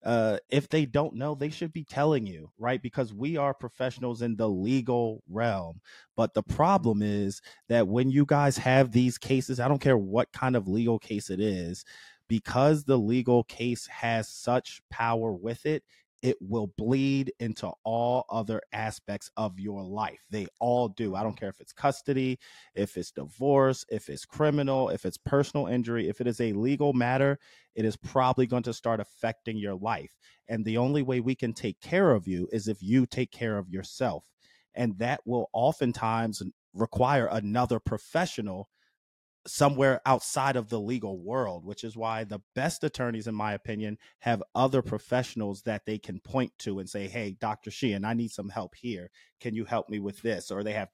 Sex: male